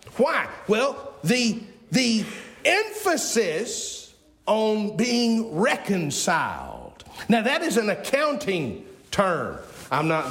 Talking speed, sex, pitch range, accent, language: 95 wpm, male, 165-230 Hz, American, English